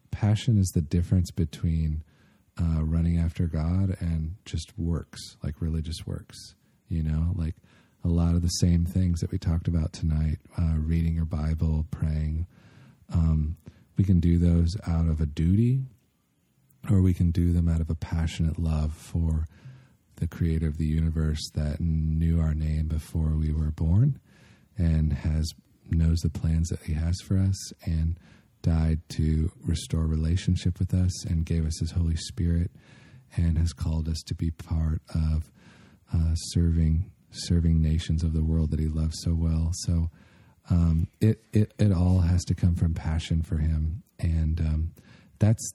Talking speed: 165 wpm